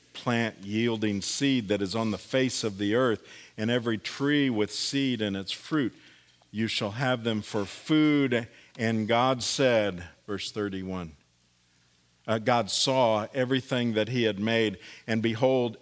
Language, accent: English, American